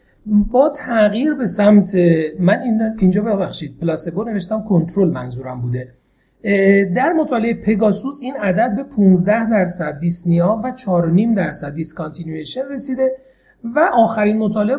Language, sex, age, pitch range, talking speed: Persian, male, 40-59, 175-235 Hz, 120 wpm